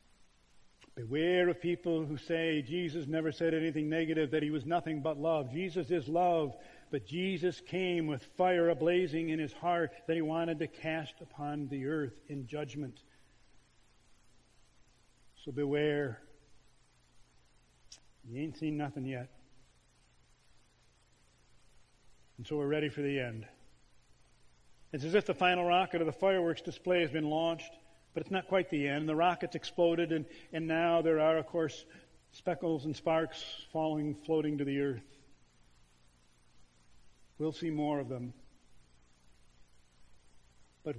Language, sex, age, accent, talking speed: English, male, 50-69, American, 140 wpm